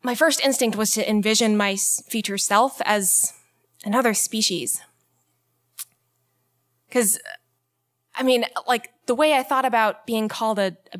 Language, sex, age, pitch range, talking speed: English, female, 20-39, 200-245 Hz, 135 wpm